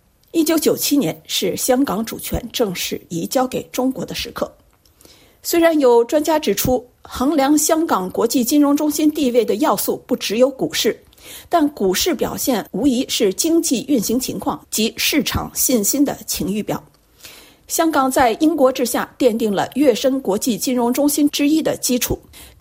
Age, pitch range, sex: 50-69, 240-300 Hz, female